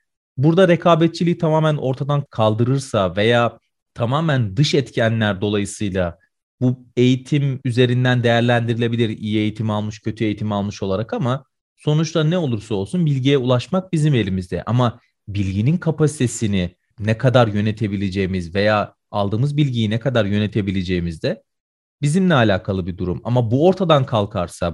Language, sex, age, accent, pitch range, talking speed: Turkish, male, 40-59, native, 105-140 Hz, 125 wpm